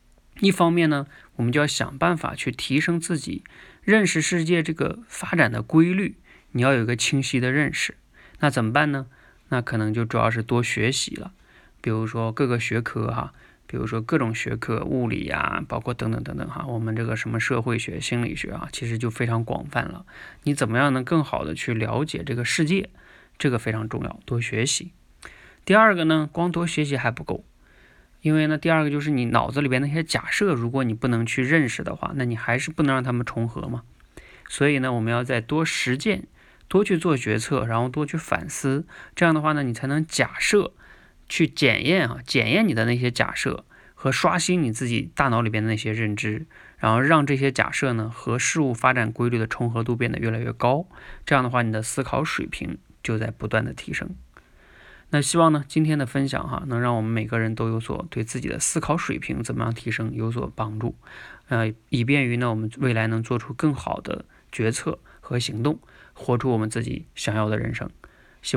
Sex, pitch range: male, 115-150 Hz